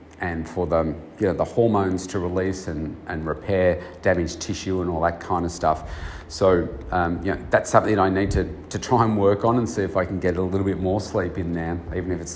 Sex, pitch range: male, 85-100 Hz